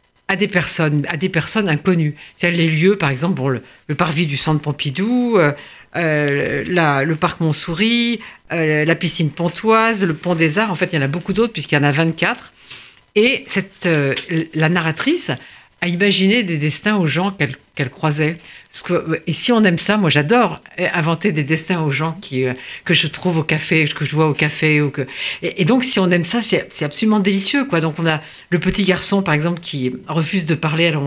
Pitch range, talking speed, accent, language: 145-180 Hz, 220 wpm, French, French